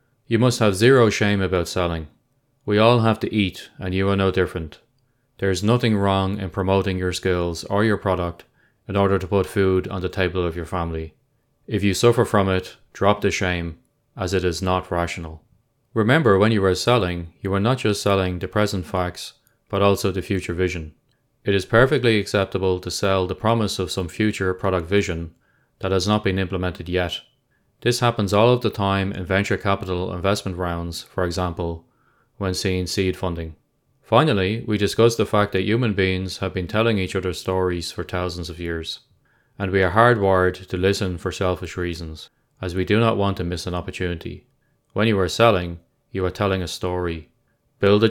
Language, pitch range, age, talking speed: English, 90-105 Hz, 20-39, 190 wpm